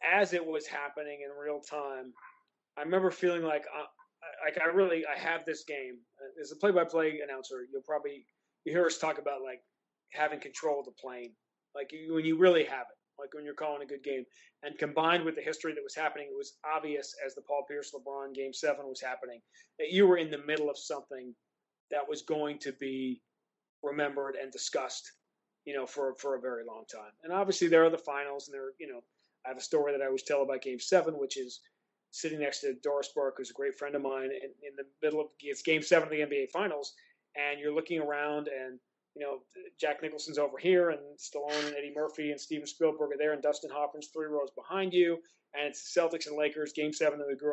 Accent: American